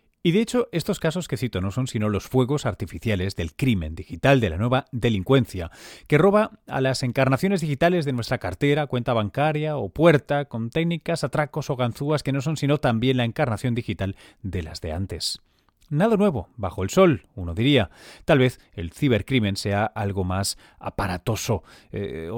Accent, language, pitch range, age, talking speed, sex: Spanish, Spanish, 100-150 Hz, 30-49, 175 wpm, male